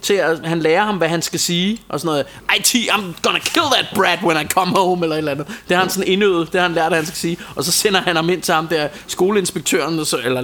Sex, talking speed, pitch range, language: male, 270 wpm, 155-190 Hz, Danish